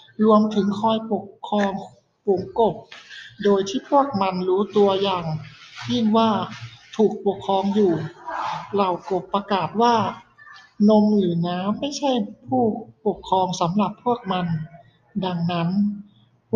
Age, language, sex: 60-79, Thai, male